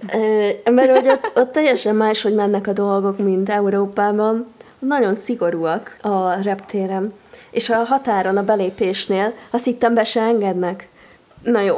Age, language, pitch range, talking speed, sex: 20-39, Hungarian, 180-220 Hz, 130 wpm, female